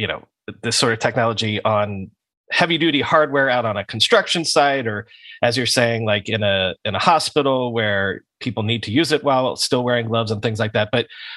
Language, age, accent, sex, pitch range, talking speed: English, 30-49, American, male, 115-150 Hz, 210 wpm